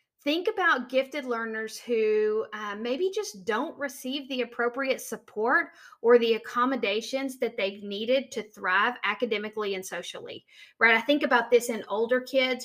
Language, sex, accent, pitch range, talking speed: English, female, American, 210-265 Hz, 155 wpm